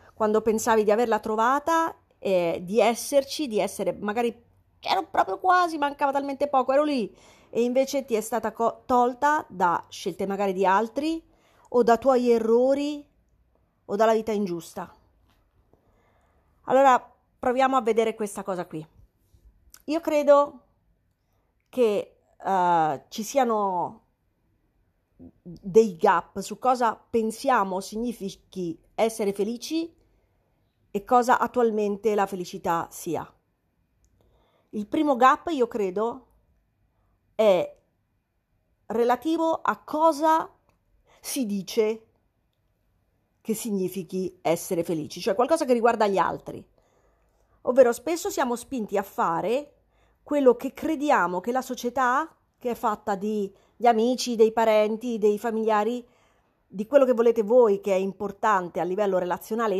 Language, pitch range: Italian, 195-260 Hz